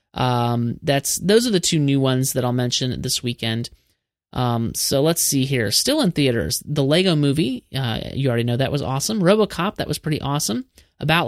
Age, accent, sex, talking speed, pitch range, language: 30-49, American, male, 195 wpm, 125-170 Hz, English